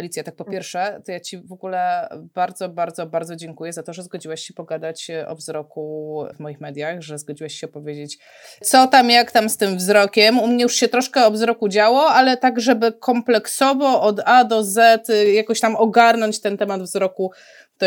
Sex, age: female, 20-39